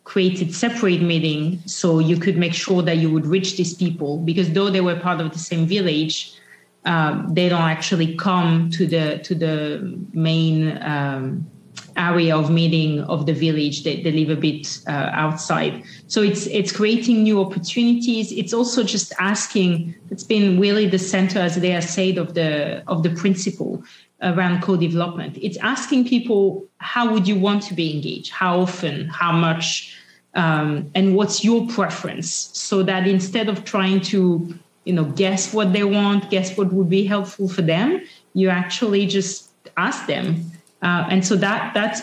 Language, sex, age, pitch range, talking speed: English, female, 30-49, 170-195 Hz, 175 wpm